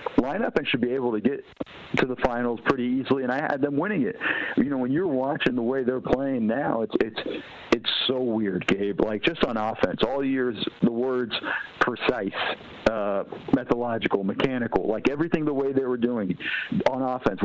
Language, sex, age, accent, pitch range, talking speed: English, male, 50-69, American, 115-155 Hz, 190 wpm